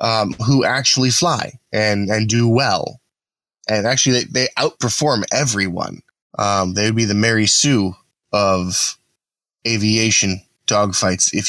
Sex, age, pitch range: male, 10-29, 105-125 Hz